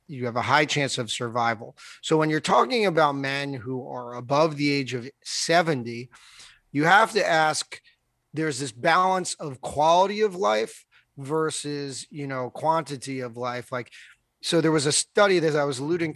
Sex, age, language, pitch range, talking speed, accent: male, 30-49, English, 135-175 Hz, 175 wpm, American